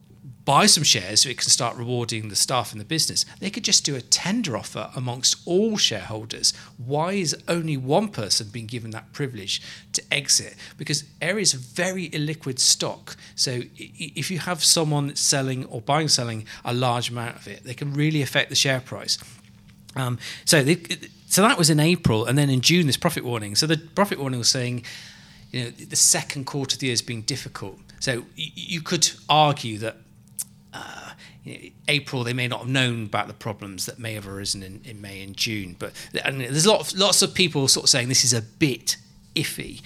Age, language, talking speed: 40-59, English, 195 wpm